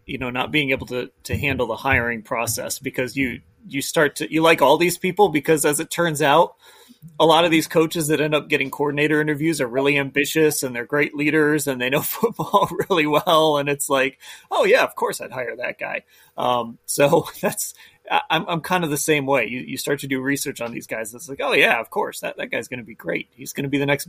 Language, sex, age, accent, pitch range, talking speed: English, male, 30-49, American, 135-160 Hz, 250 wpm